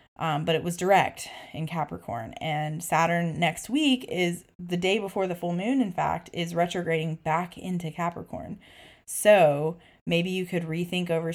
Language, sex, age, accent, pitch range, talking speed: English, female, 20-39, American, 165-200 Hz, 165 wpm